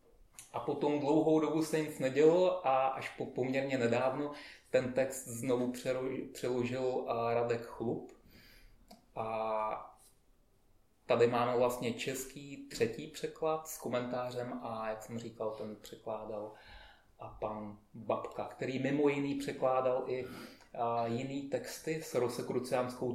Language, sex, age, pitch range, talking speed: Czech, male, 30-49, 115-130 Hz, 115 wpm